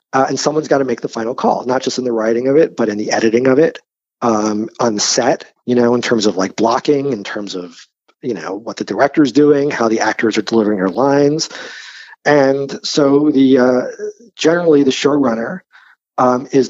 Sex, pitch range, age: male, 115-135 Hz, 40-59